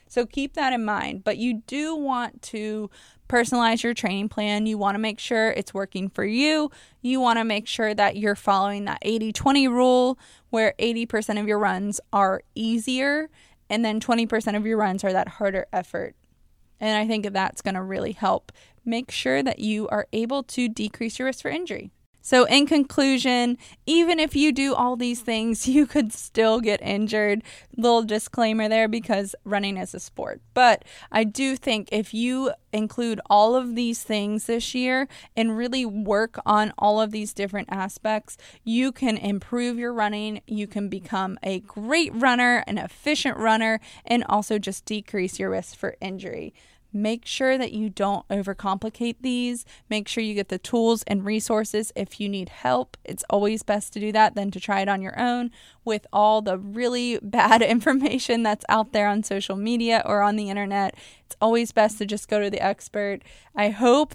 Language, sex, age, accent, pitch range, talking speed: English, female, 20-39, American, 205-245 Hz, 185 wpm